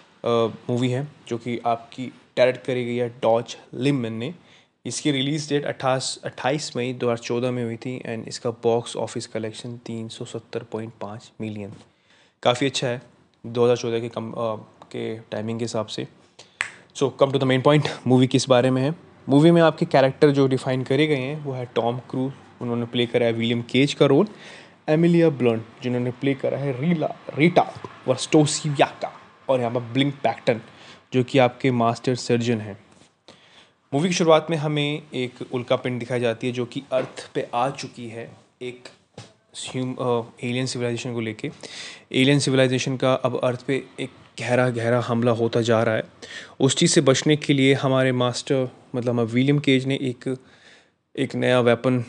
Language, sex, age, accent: Hindi, male, 20-39, native